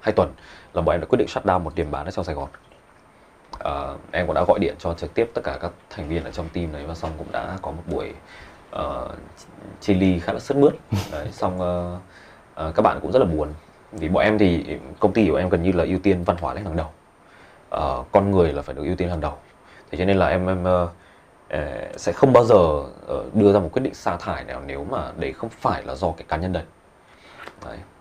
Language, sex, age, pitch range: Vietnamese, male, 20-39, 80-95 Hz